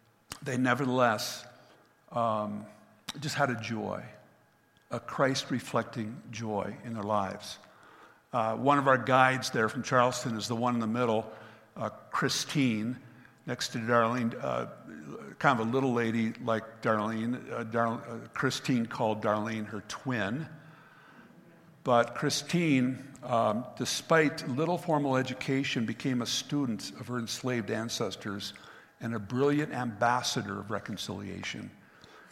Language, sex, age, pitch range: English, male, 60-79, 115-135 Hz